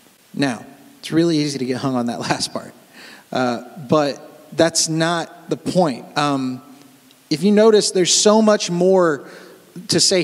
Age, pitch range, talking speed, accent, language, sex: 30-49, 150-200 Hz, 160 wpm, American, English, male